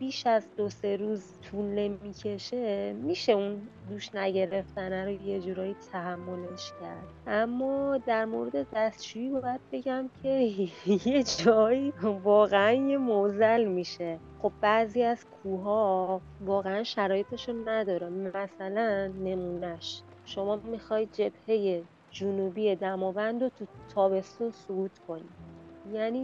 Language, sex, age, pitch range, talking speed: English, female, 30-49, 190-240 Hz, 110 wpm